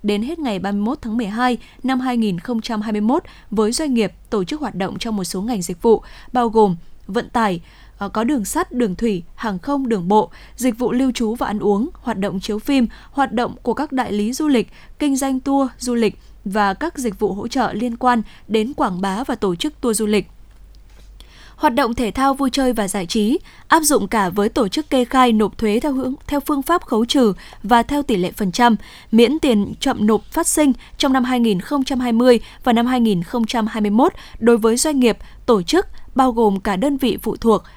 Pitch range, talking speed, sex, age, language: 215-265 Hz, 210 wpm, female, 10-29, Vietnamese